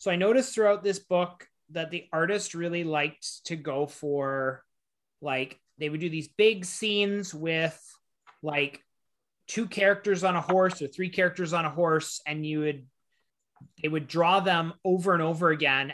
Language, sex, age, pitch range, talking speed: English, male, 30-49, 150-195 Hz, 170 wpm